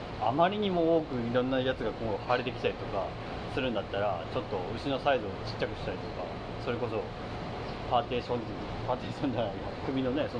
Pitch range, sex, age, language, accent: 110-165 Hz, male, 30-49, Japanese, native